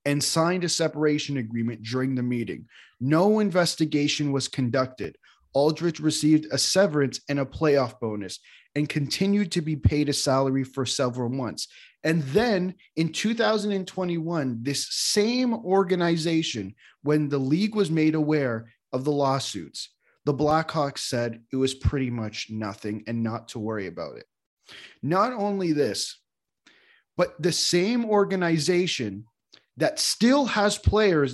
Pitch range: 130-170 Hz